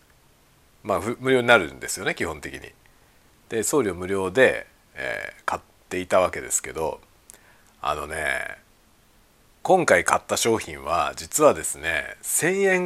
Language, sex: Japanese, male